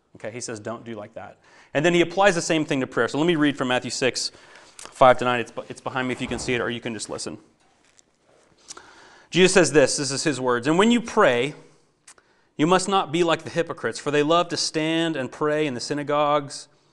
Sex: male